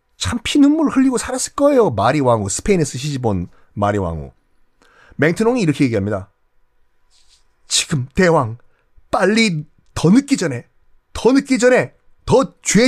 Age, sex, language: 30-49, male, Korean